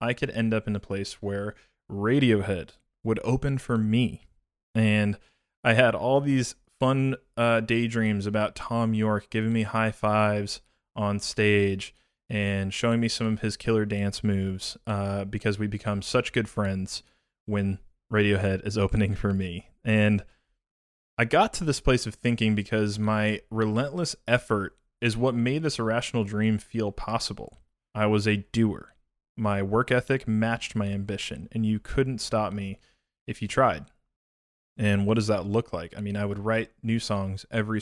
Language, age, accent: English, 20-39, American